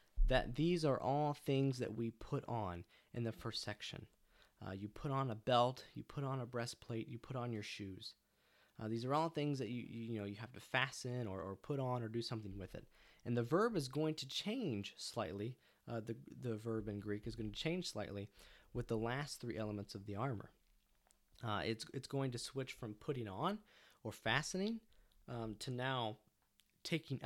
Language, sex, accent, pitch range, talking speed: English, male, American, 105-135 Hz, 205 wpm